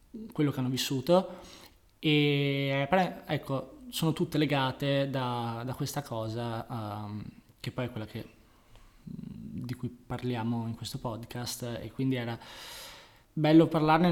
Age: 20-39